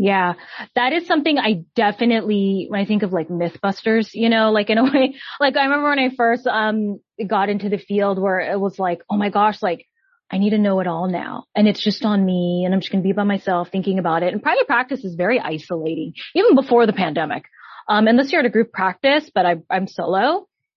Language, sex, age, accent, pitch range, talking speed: English, female, 20-39, American, 195-240 Hz, 235 wpm